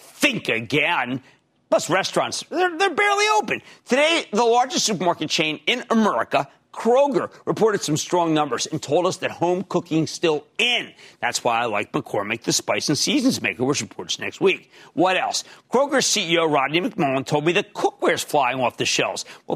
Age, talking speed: 50-69, 175 wpm